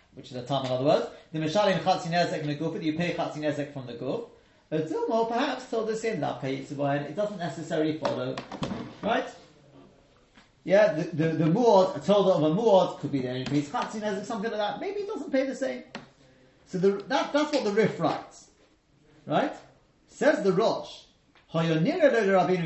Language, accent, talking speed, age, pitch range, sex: English, British, 170 wpm, 30-49, 155-230 Hz, male